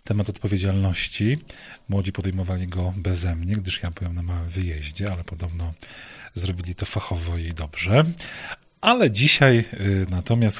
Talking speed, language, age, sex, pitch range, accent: 135 wpm, Polish, 40-59, male, 90-110 Hz, native